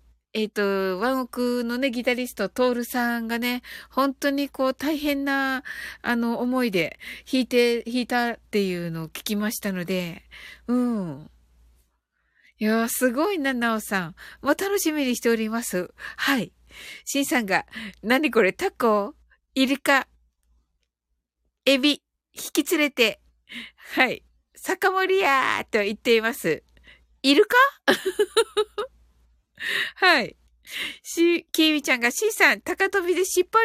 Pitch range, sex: 210-300 Hz, female